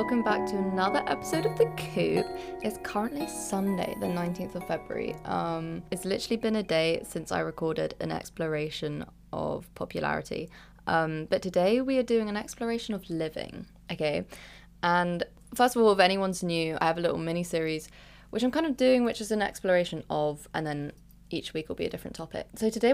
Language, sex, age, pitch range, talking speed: English, female, 20-39, 170-240 Hz, 190 wpm